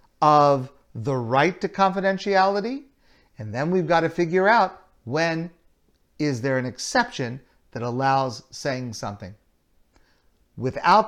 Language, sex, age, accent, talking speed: English, male, 50-69, American, 120 wpm